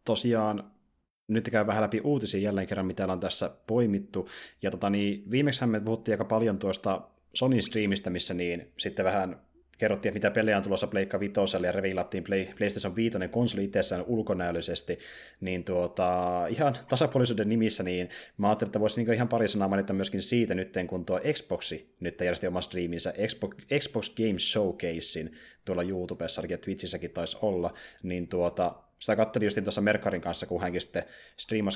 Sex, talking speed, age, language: male, 165 wpm, 30-49, Finnish